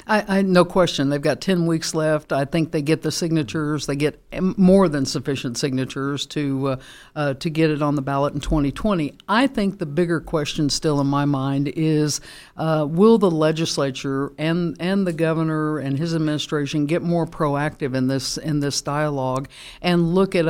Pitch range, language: 150-175 Hz, English